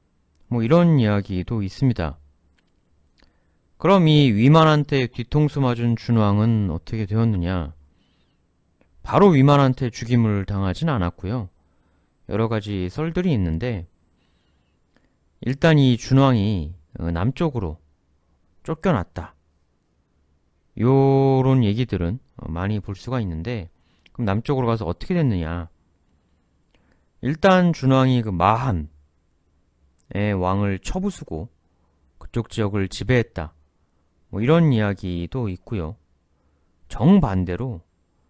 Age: 30-49